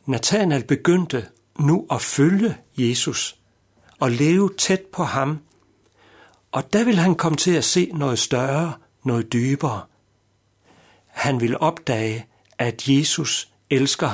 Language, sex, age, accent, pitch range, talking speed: Danish, male, 60-79, native, 110-160 Hz, 125 wpm